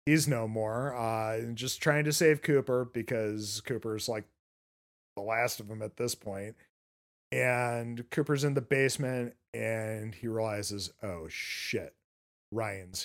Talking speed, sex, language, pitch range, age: 140 wpm, male, English, 105-135 Hz, 40-59